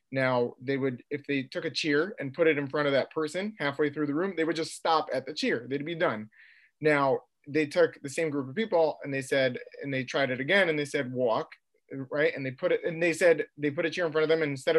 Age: 20-39